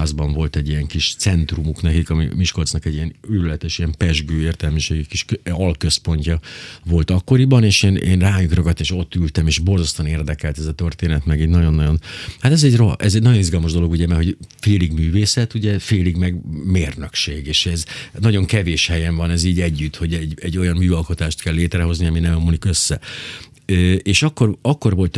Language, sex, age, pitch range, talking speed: Hungarian, male, 50-69, 80-95 Hz, 185 wpm